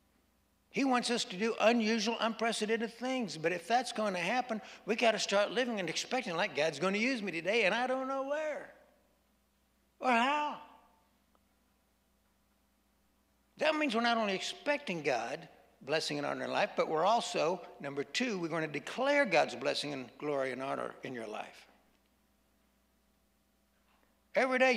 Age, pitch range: 60-79, 190-245 Hz